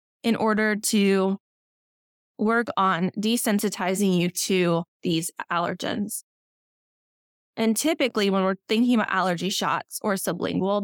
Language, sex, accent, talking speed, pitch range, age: English, female, American, 110 wpm, 190-235 Hz, 20-39